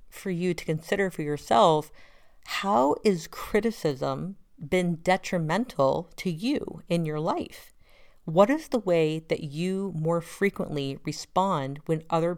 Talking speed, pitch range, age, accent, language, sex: 130 wpm, 150-185 Hz, 40-59, American, English, female